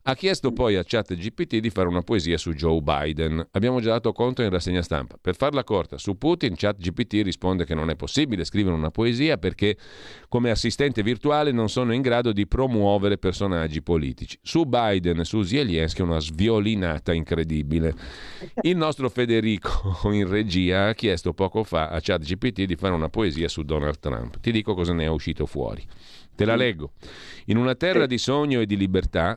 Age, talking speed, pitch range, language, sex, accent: 40-59, 185 wpm, 85-120 Hz, Italian, male, native